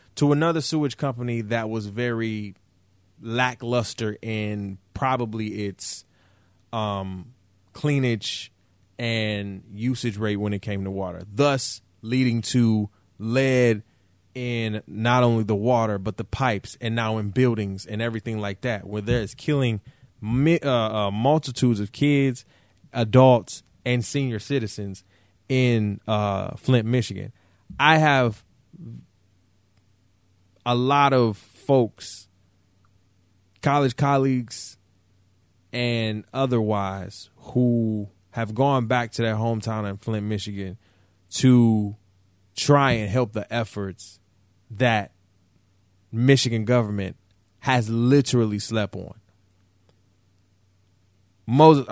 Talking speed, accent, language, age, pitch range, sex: 105 wpm, American, English, 20-39, 95-125 Hz, male